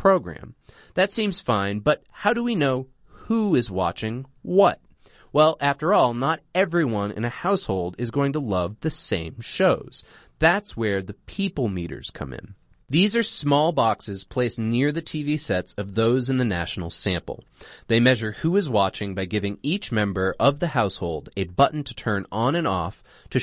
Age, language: 30-49, English